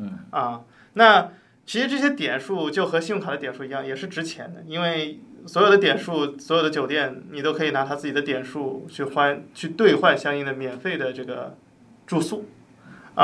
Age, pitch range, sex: 20-39, 135-180 Hz, male